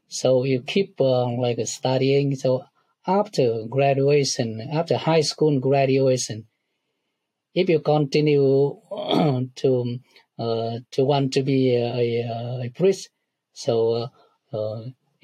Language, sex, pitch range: English, male, 120-145 Hz